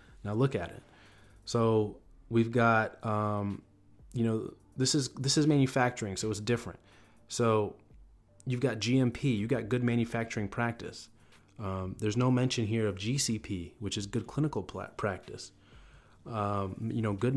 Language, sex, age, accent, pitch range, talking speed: English, male, 30-49, American, 105-125 Hz, 150 wpm